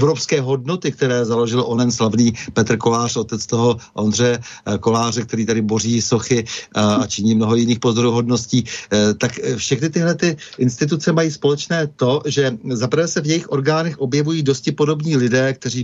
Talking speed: 150 wpm